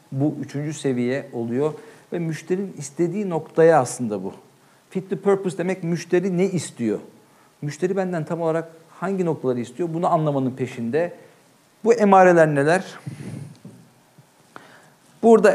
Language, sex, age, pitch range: Turkish, male, 50-69, 135-170 Hz